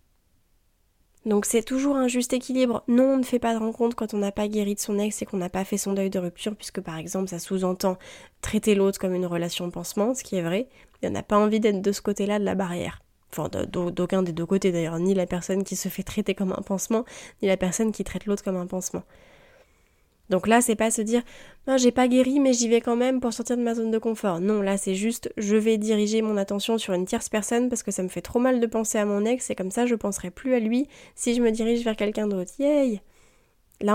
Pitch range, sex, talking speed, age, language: 185-235 Hz, female, 260 wpm, 20-39, French